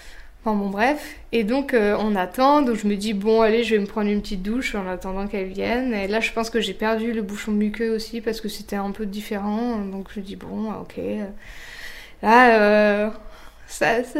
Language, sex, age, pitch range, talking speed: French, female, 20-39, 205-255 Hz, 210 wpm